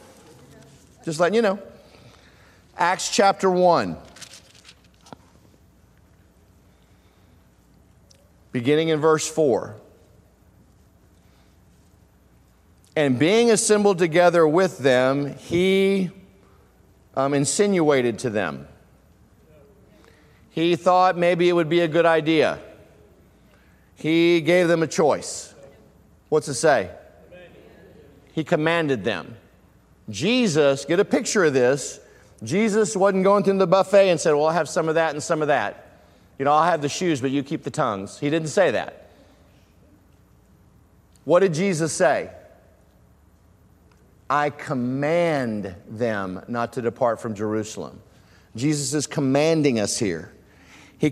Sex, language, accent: male, English, American